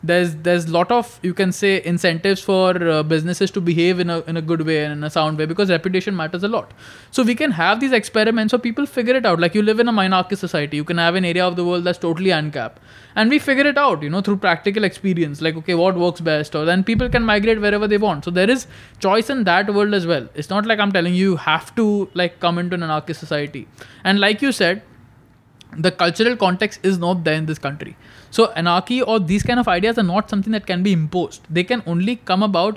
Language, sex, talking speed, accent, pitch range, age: Hindi, male, 255 wpm, native, 160-205 Hz, 20-39